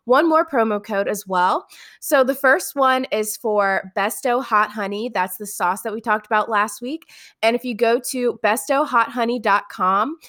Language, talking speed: English, 175 wpm